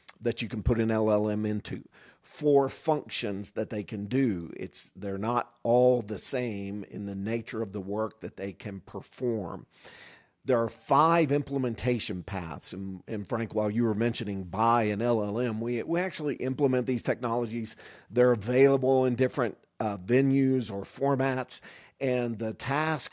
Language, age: English, 50-69